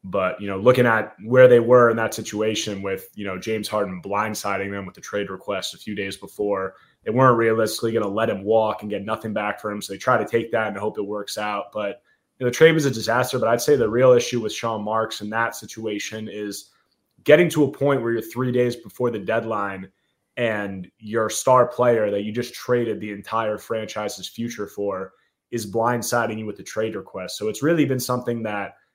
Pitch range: 105-120 Hz